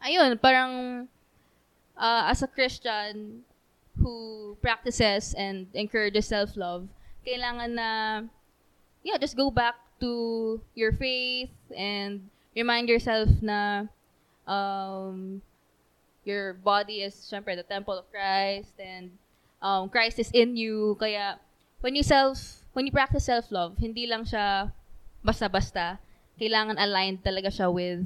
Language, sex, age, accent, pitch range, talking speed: Filipino, female, 20-39, native, 195-235 Hz, 120 wpm